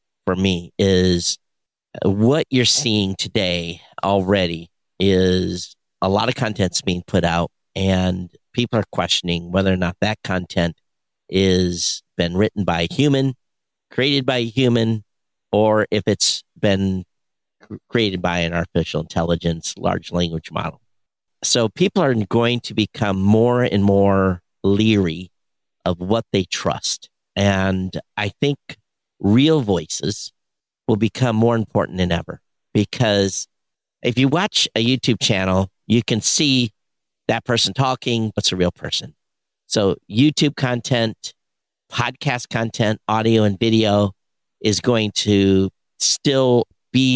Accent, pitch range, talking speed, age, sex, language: American, 95-115 Hz, 130 wpm, 50-69, male, English